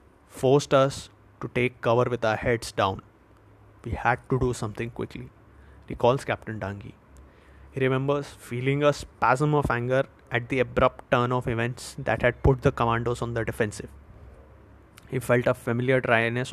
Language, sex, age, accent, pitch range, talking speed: Hindi, male, 20-39, native, 110-130 Hz, 165 wpm